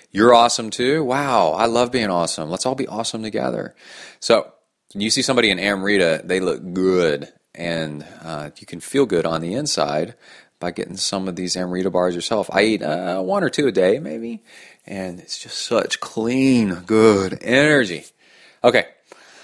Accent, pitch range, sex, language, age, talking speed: American, 90-120 Hz, male, English, 30-49, 175 wpm